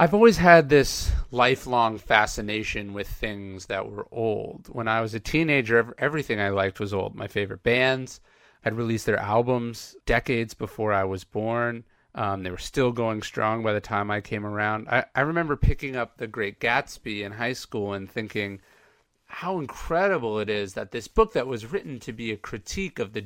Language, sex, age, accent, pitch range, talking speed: English, male, 30-49, American, 105-130 Hz, 190 wpm